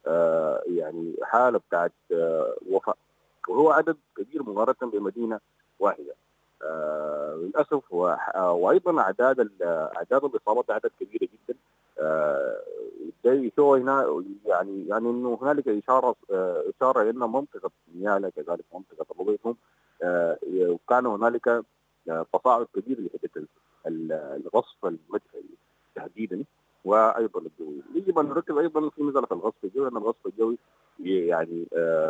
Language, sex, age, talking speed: English, male, 30-49, 105 wpm